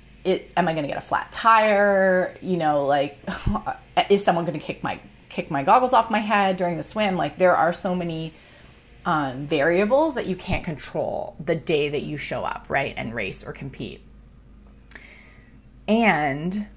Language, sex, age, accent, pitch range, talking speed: English, female, 30-49, American, 160-210 Hz, 175 wpm